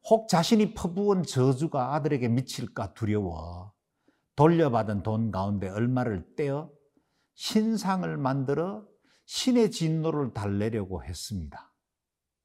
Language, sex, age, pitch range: Korean, male, 50-69, 110-165 Hz